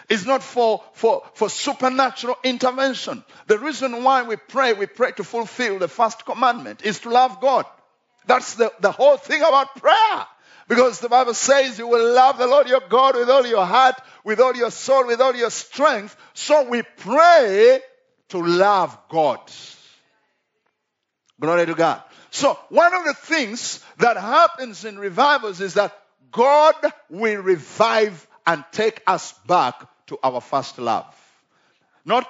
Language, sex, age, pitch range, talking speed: English, male, 50-69, 175-260 Hz, 160 wpm